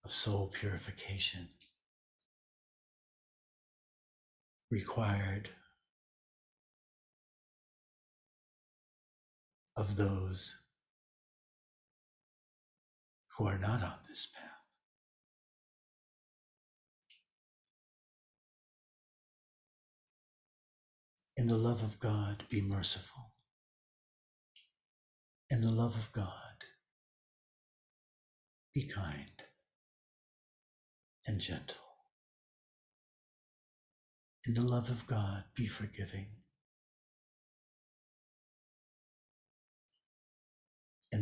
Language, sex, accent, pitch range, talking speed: English, male, American, 70-105 Hz, 50 wpm